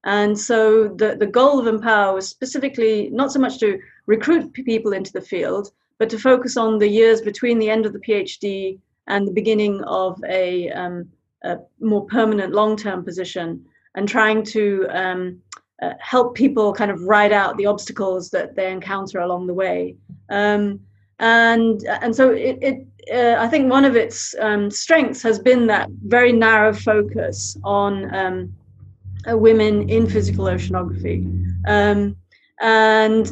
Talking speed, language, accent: 160 wpm, English, British